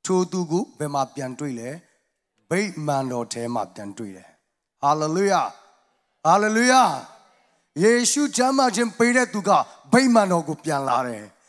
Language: English